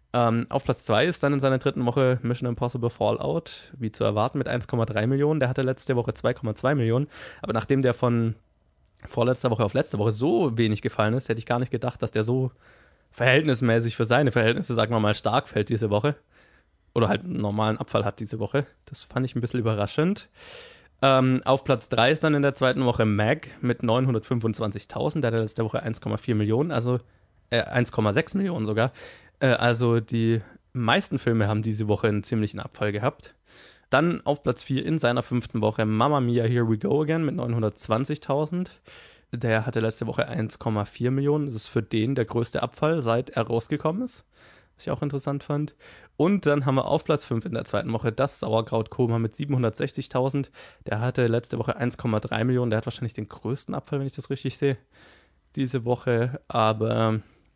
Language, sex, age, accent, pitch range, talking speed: German, male, 20-39, German, 110-135 Hz, 185 wpm